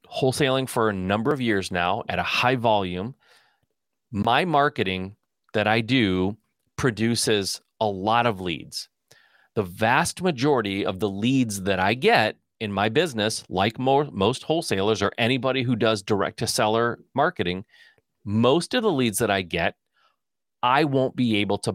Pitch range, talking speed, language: 110-140 Hz, 155 wpm, English